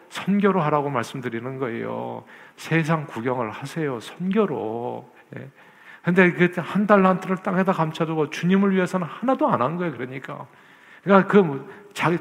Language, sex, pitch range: Korean, male, 145-190 Hz